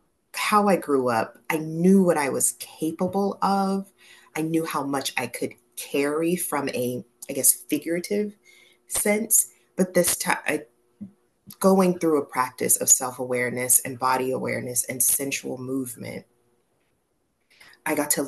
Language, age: English, 30-49